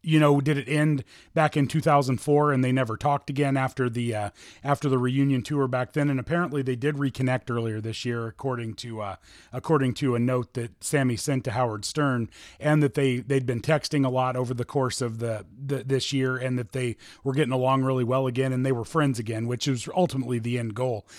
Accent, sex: American, male